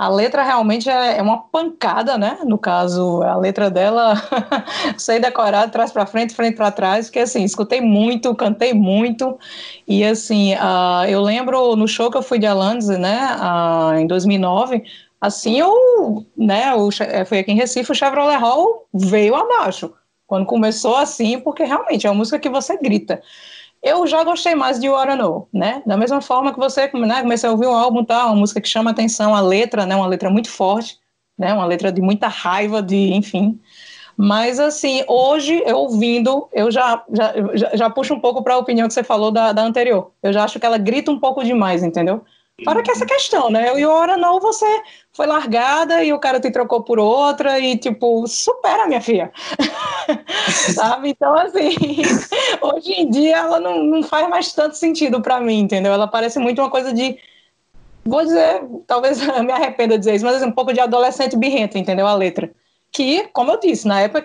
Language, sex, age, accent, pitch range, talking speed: Portuguese, female, 20-39, Brazilian, 210-275 Hz, 195 wpm